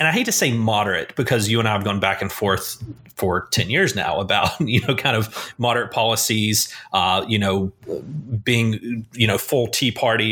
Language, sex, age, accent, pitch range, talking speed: English, male, 30-49, American, 105-135 Hz, 205 wpm